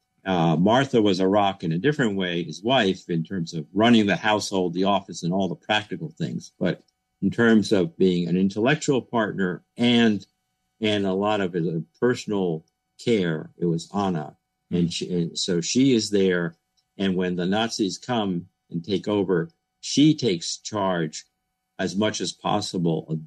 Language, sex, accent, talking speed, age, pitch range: English, male, American, 170 wpm, 50-69, 85-110 Hz